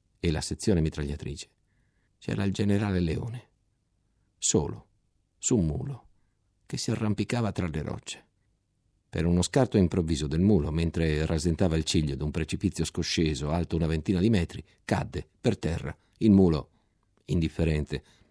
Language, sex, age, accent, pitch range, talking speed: Italian, male, 50-69, native, 80-110 Hz, 140 wpm